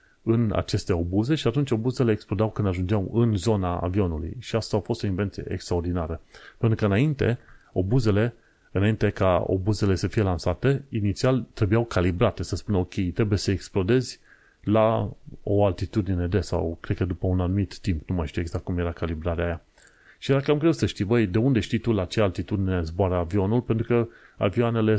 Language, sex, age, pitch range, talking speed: Romanian, male, 30-49, 90-115 Hz, 180 wpm